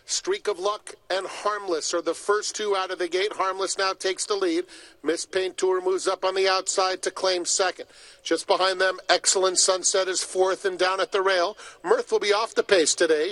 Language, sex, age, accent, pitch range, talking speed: English, male, 40-59, American, 190-215 Hz, 210 wpm